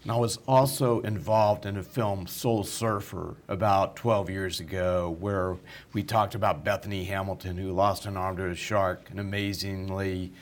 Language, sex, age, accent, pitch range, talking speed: English, male, 50-69, American, 105-135 Hz, 165 wpm